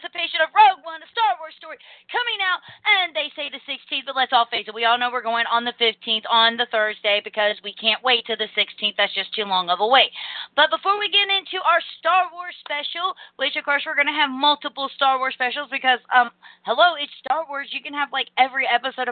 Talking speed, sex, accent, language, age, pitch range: 240 wpm, female, American, English, 30-49, 250-335 Hz